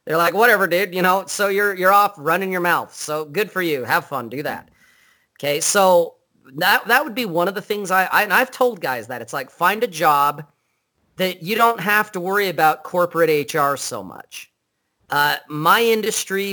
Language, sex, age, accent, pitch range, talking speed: English, male, 40-59, American, 155-200 Hz, 205 wpm